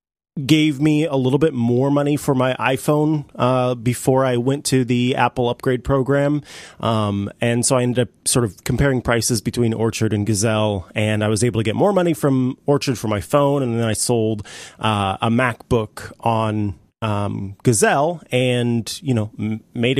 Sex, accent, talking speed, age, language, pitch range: male, American, 185 wpm, 30-49, English, 110-135 Hz